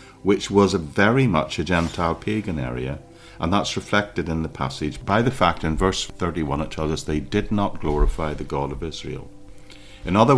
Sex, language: male, English